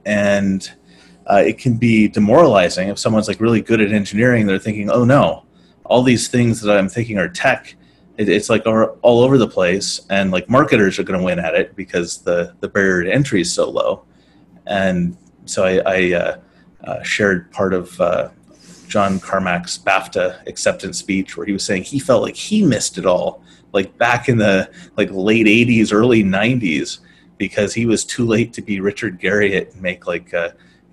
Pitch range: 95-115 Hz